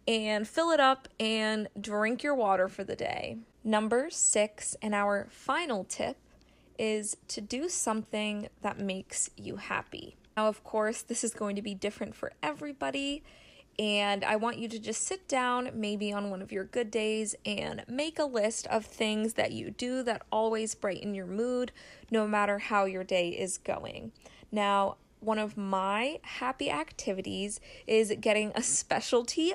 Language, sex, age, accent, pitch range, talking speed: English, female, 20-39, American, 210-250 Hz, 170 wpm